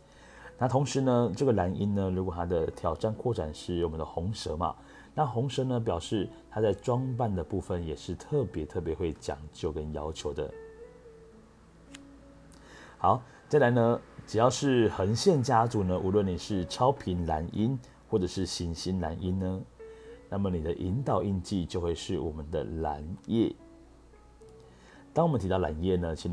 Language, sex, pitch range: Chinese, male, 85-115 Hz